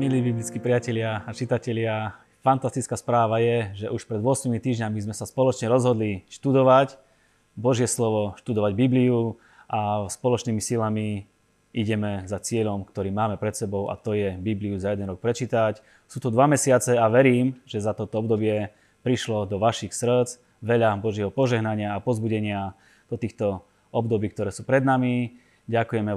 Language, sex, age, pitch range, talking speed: Slovak, male, 20-39, 100-120 Hz, 155 wpm